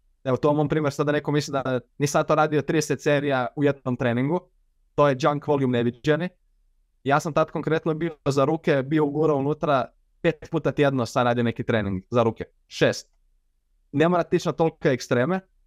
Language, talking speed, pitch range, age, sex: Croatian, 190 wpm, 125-160 Hz, 20-39, male